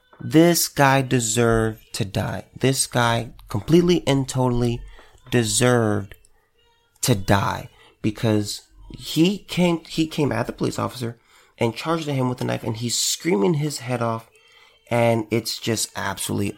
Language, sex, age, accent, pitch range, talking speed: English, male, 30-49, American, 115-165 Hz, 140 wpm